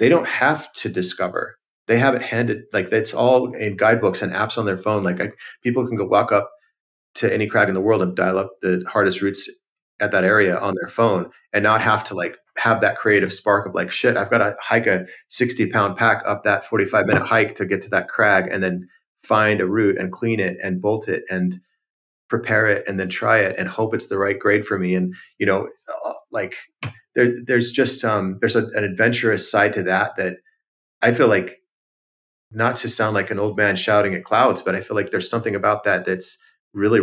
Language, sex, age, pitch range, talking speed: English, male, 30-49, 95-125 Hz, 220 wpm